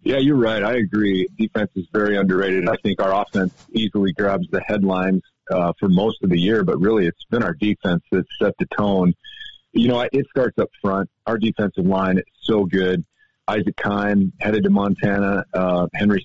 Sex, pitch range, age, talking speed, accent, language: male, 95-110 Hz, 40-59, 190 wpm, American, English